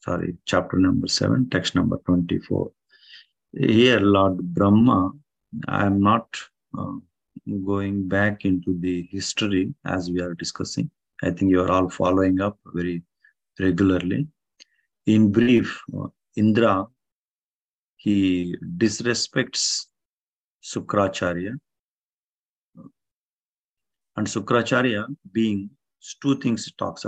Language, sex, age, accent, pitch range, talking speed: English, male, 50-69, Indian, 95-110 Hz, 100 wpm